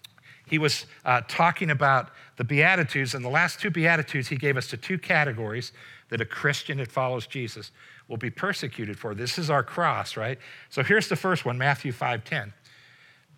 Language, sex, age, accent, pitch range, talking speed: English, male, 60-79, American, 120-165 Hz, 180 wpm